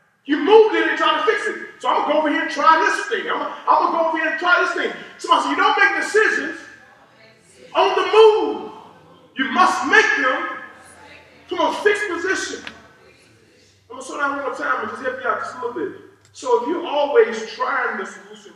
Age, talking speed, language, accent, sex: 30-49, 235 wpm, English, American, male